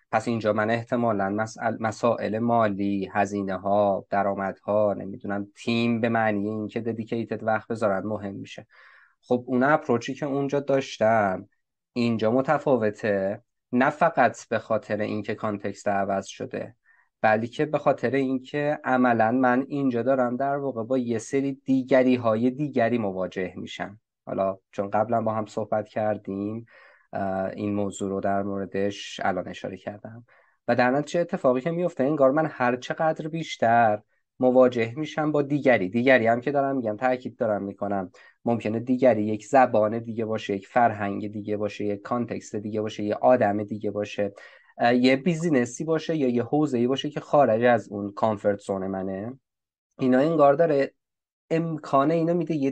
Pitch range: 105-135 Hz